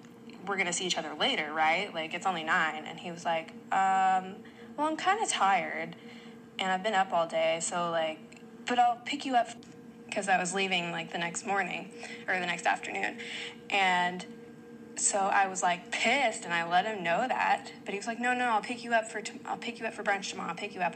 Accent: American